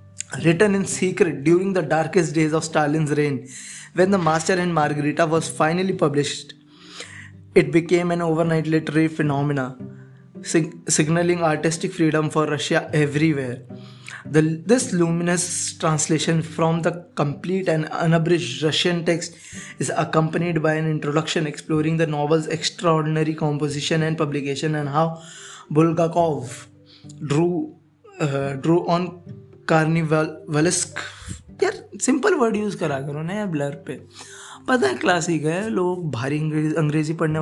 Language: Hindi